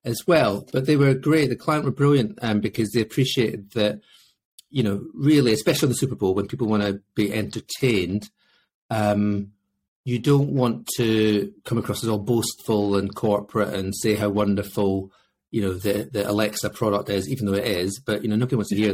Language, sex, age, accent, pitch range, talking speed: English, male, 40-59, British, 100-120 Hz, 205 wpm